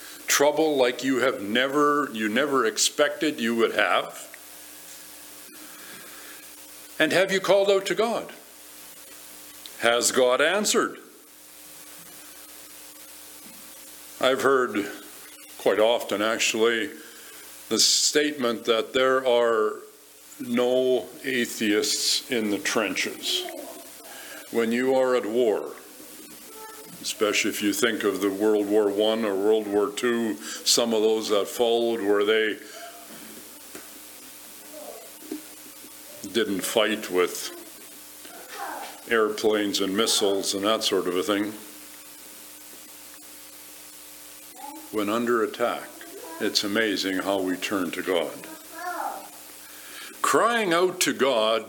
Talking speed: 100 wpm